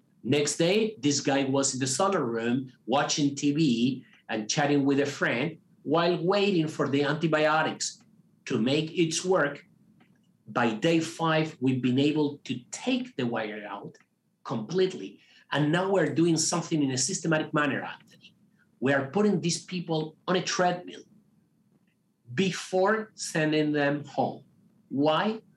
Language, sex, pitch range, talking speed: English, male, 140-185 Hz, 140 wpm